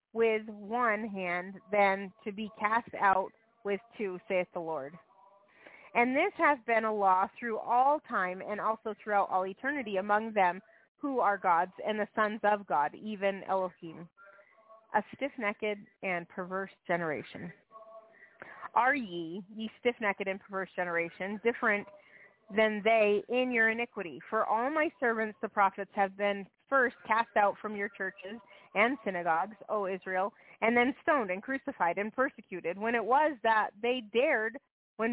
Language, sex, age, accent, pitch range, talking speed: English, female, 30-49, American, 195-235 Hz, 150 wpm